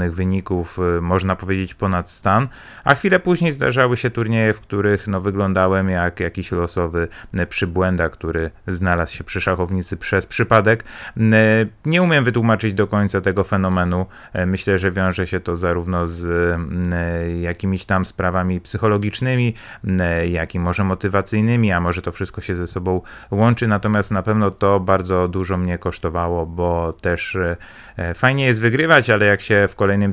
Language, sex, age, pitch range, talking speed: Polish, male, 30-49, 85-110 Hz, 145 wpm